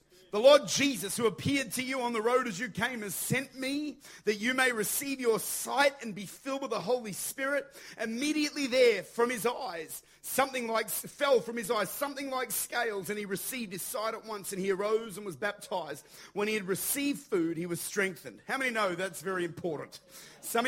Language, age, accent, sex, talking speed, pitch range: English, 40-59, Australian, male, 205 wpm, 200-260 Hz